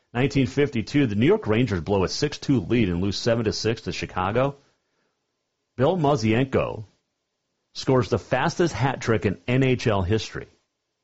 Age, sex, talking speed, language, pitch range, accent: 40-59, male, 130 wpm, English, 100-135 Hz, American